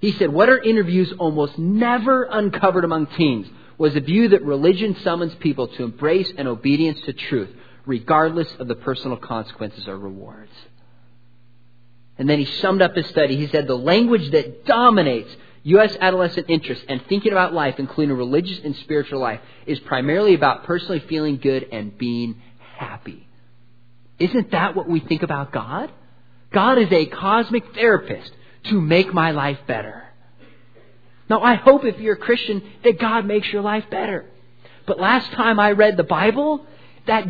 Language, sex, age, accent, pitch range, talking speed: English, male, 30-49, American, 125-195 Hz, 165 wpm